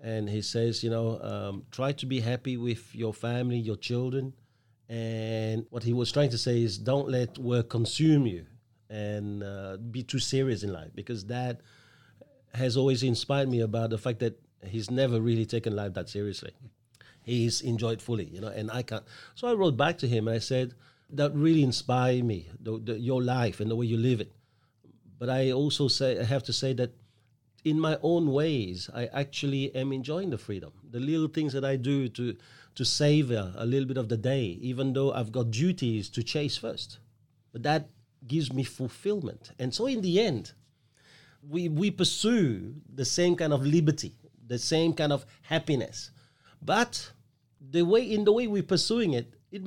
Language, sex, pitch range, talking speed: English, male, 115-145 Hz, 190 wpm